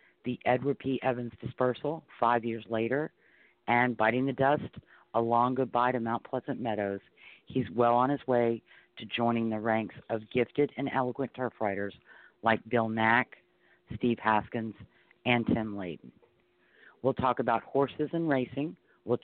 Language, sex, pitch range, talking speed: English, female, 115-140 Hz, 155 wpm